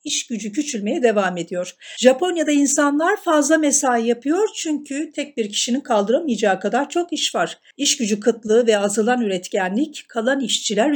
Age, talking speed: 50-69, 150 wpm